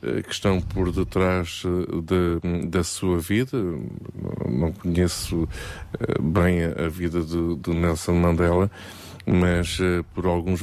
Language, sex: Portuguese, male